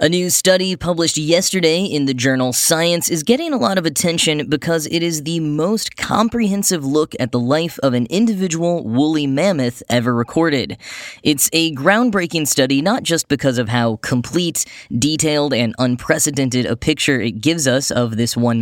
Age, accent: 10-29, American